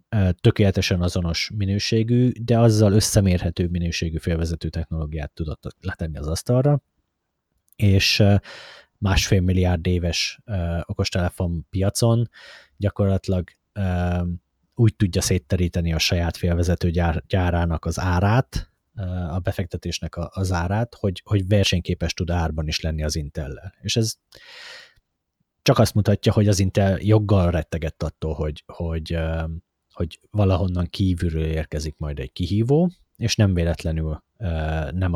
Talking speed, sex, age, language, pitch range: 115 wpm, male, 30-49, Hungarian, 85-100 Hz